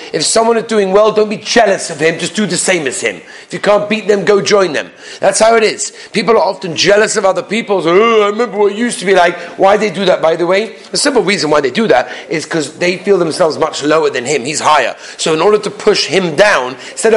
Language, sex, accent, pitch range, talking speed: English, male, British, 175-220 Hz, 265 wpm